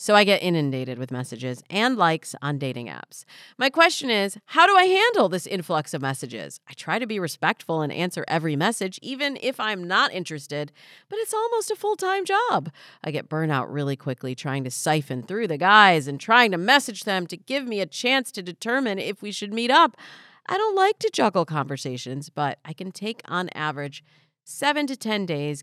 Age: 40-59